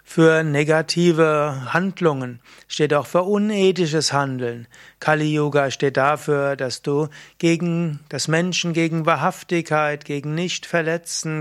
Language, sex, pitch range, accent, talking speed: German, male, 145-175 Hz, German, 110 wpm